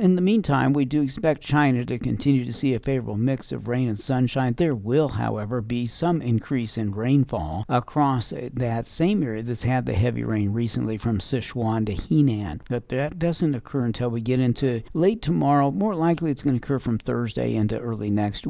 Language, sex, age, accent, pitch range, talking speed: English, male, 50-69, American, 115-140 Hz, 200 wpm